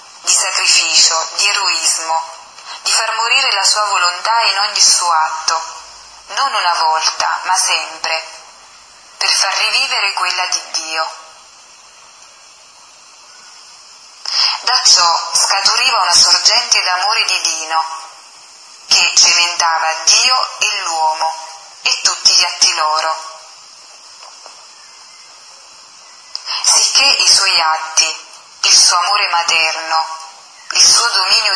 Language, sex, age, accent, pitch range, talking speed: Italian, female, 30-49, native, 160-195 Hz, 100 wpm